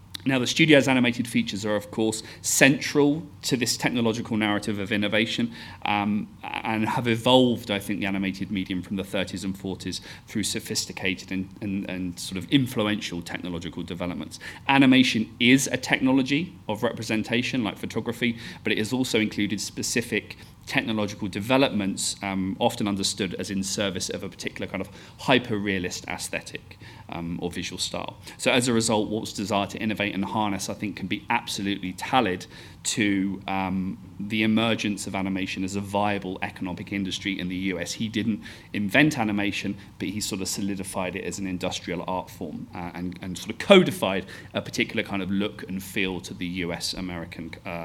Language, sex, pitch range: English, male, 95-110 Hz